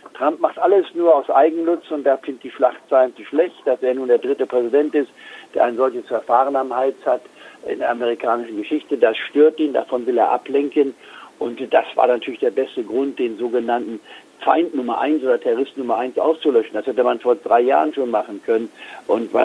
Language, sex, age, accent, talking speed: German, male, 60-79, German, 205 wpm